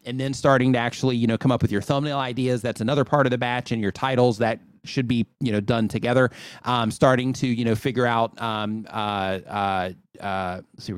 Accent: American